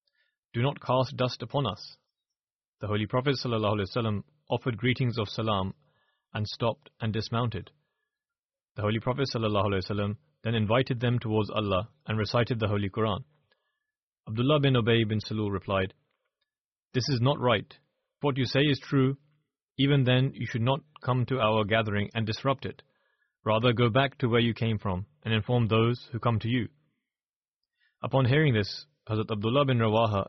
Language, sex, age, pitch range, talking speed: English, male, 30-49, 110-135 Hz, 160 wpm